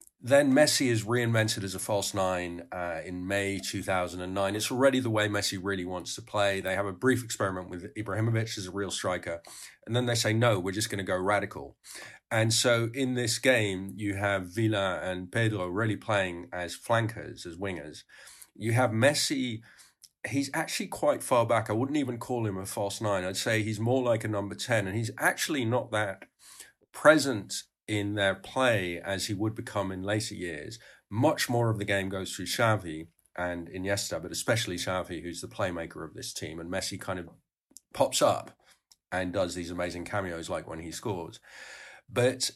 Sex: male